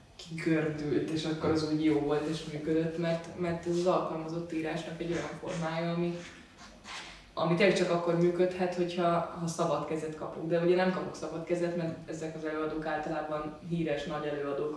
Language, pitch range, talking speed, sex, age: Hungarian, 155-175 Hz, 175 wpm, female, 20-39